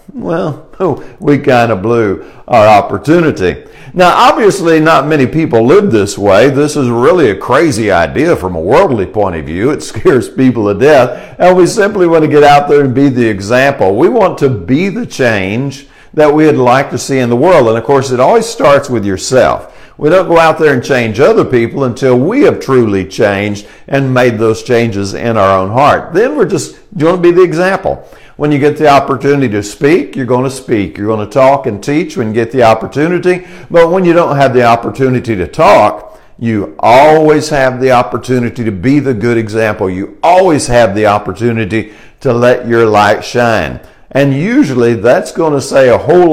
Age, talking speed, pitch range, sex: 50-69, 200 wpm, 115-145 Hz, male